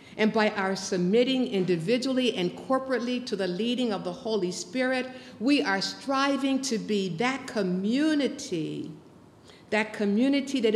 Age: 50-69